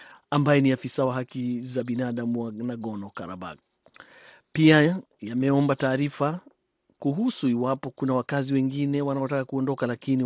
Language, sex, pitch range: Swahili, male, 120-145 Hz